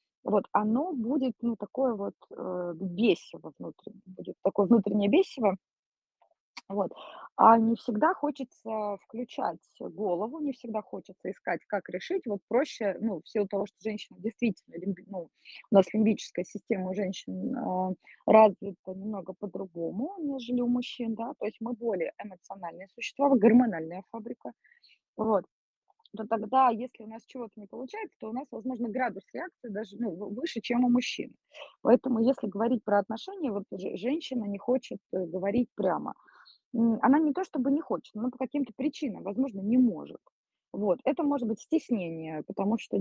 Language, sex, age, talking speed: Russian, female, 20-39, 155 wpm